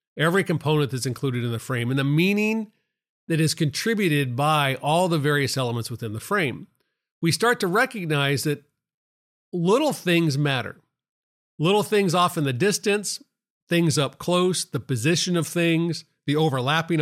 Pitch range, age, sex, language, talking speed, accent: 140-180 Hz, 40-59, male, English, 155 wpm, American